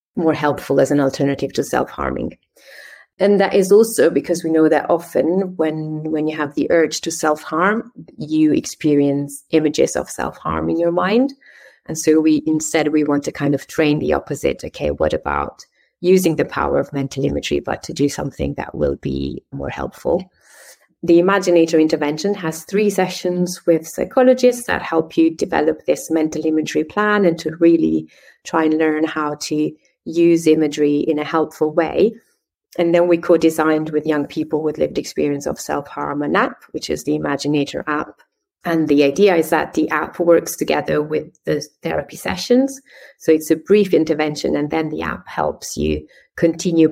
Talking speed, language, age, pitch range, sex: 175 wpm, English, 30-49, 150-175 Hz, female